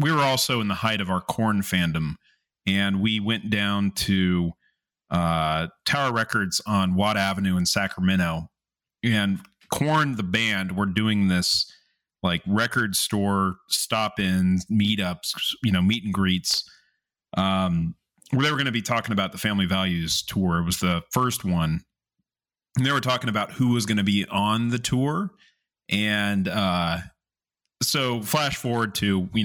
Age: 30-49